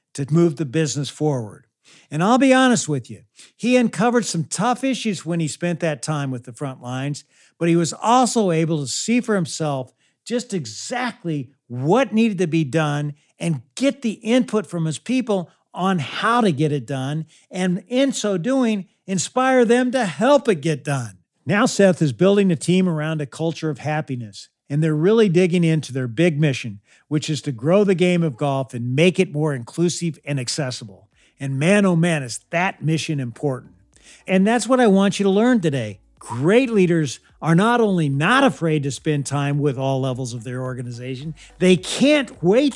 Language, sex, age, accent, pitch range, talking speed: English, male, 50-69, American, 145-200 Hz, 190 wpm